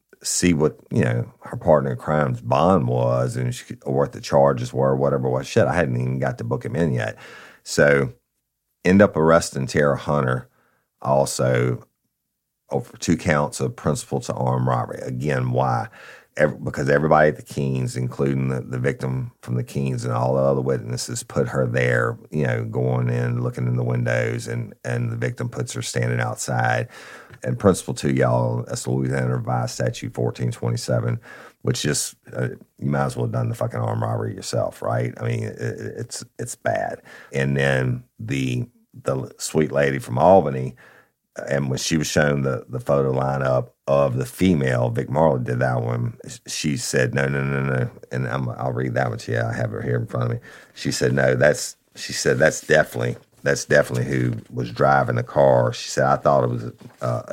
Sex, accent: male, American